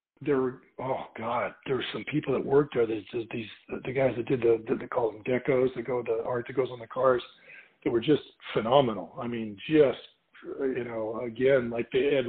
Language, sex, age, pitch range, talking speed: English, male, 40-59, 125-155 Hz, 225 wpm